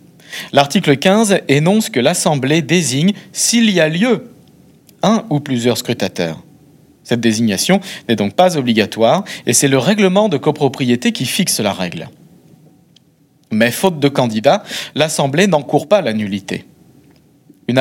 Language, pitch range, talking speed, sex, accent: French, 120-180 Hz, 135 wpm, male, French